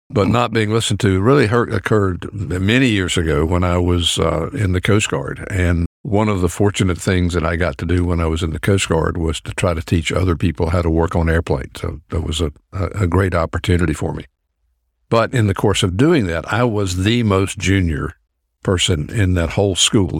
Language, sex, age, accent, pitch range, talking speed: English, male, 60-79, American, 80-100 Hz, 225 wpm